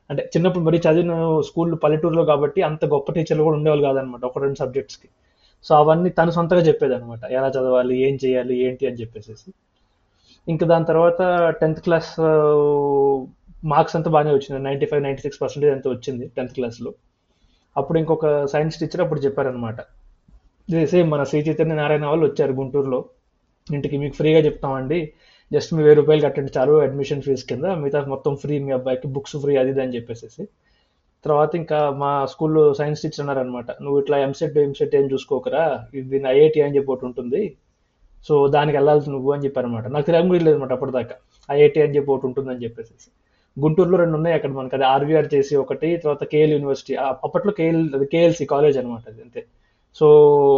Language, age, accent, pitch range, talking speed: Telugu, 20-39, native, 135-155 Hz, 165 wpm